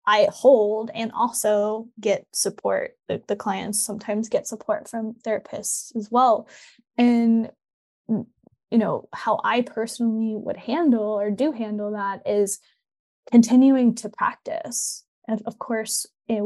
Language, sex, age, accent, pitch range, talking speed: English, female, 10-29, American, 200-230 Hz, 130 wpm